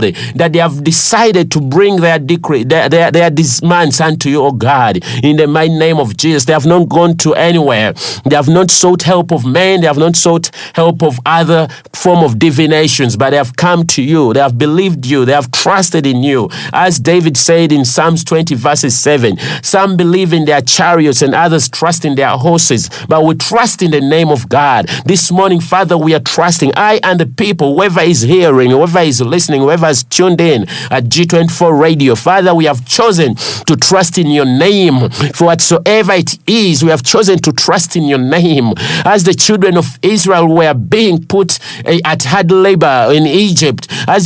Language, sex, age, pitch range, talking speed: English, male, 50-69, 150-180 Hz, 200 wpm